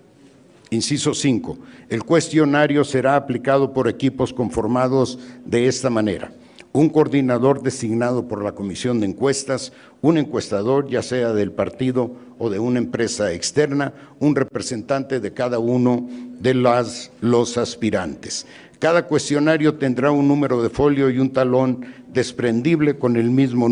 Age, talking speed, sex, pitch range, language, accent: 60-79, 135 wpm, male, 120-140 Hz, Spanish, Mexican